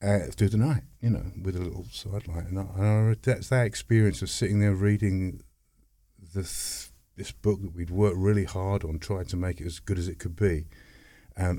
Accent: British